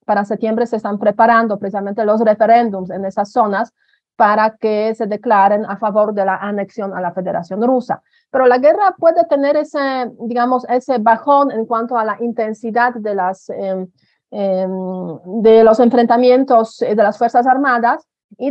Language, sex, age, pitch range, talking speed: Spanish, female, 30-49, 205-245 Hz, 160 wpm